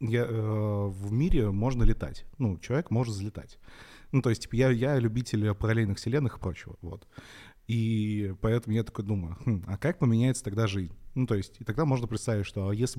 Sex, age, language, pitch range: male, 30-49, Russian, 100-120 Hz